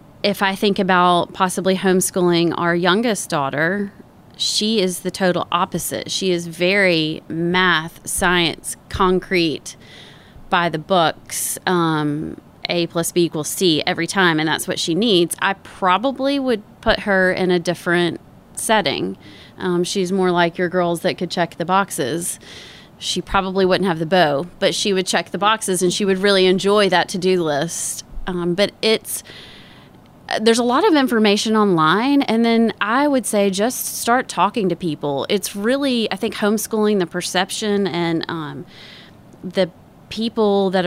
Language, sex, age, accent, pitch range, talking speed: English, female, 30-49, American, 170-205 Hz, 155 wpm